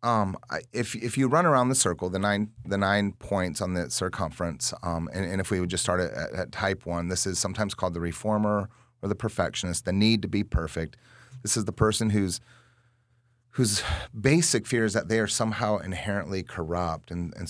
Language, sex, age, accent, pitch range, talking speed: English, male, 30-49, American, 85-110 Hz, 205 wpm